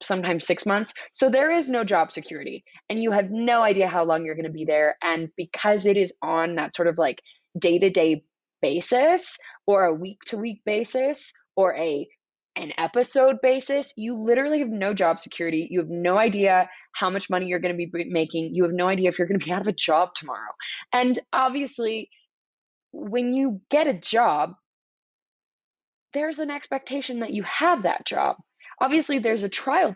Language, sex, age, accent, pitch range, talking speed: English, female, 20-39, American, 180-255 Hz, 180 wpm